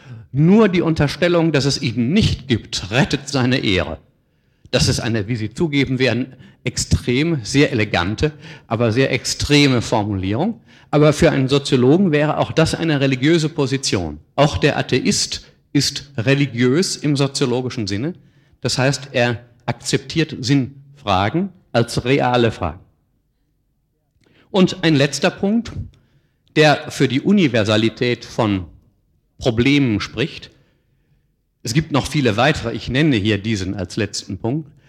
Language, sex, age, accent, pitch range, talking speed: German, male, 50-69, German, 120-145 Hz, 125 wpm